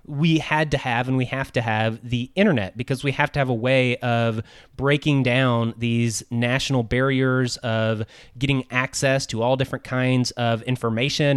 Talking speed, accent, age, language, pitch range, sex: 175 wpm, American, 30-49, English, 120-140 Hz, male